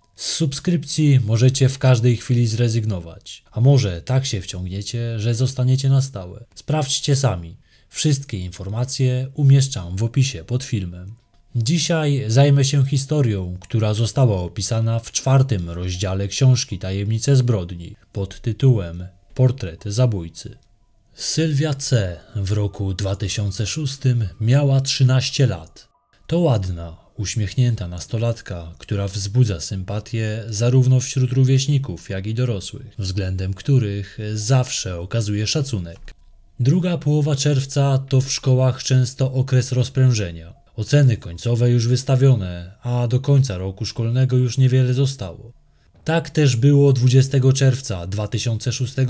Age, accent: 20-39, native